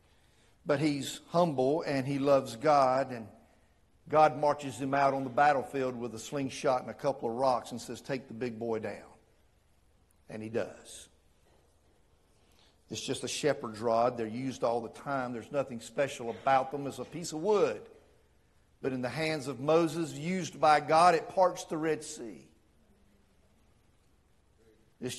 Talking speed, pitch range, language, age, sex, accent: 160 wpm, 125-175 Hz, English, 50-69, male, American